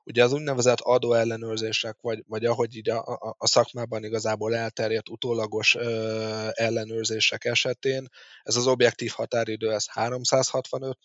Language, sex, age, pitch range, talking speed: Hungarian, male, 20-39, 110-120 Hz, 120 wpm